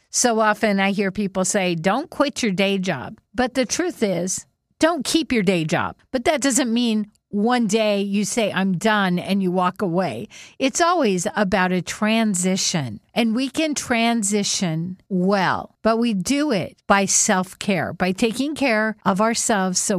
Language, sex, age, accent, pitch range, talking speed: English, female, 50-69, American, 185-235 Hz, 170 wpm